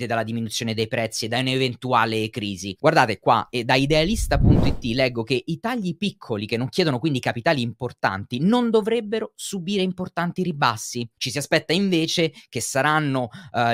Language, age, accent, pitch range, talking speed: Italian, 30-49, native, 120-165 Hz, 155 wpm